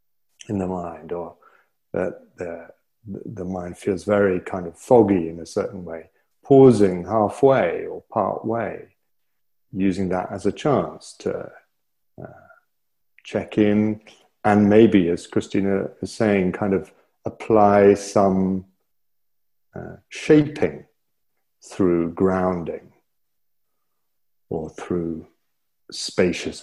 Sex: male